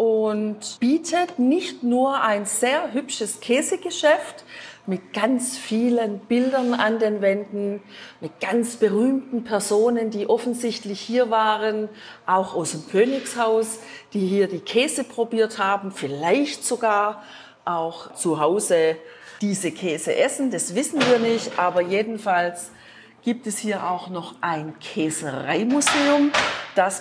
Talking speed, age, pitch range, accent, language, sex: 120 wpm, 40-59, 190-245 Hz, German, German, female